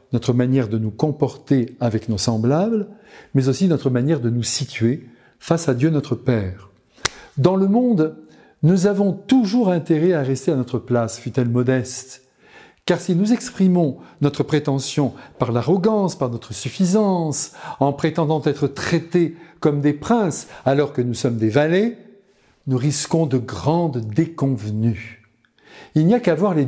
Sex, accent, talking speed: male, French, 155 wpm